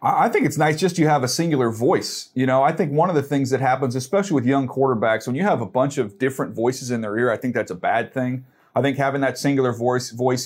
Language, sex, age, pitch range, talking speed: English, male, 30-49, 115-145 Hz, 275 wpm